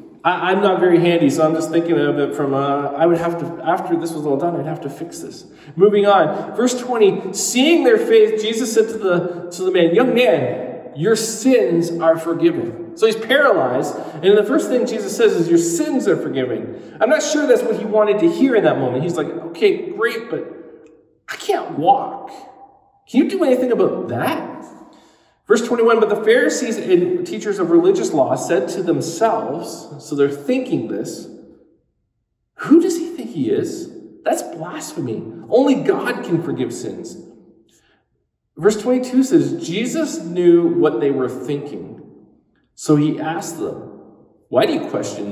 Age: 40-59